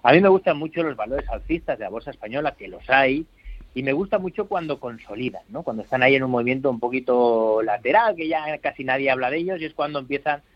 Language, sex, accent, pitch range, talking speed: Spanish, male, Spanish, 125-180 Hz, 240 wpm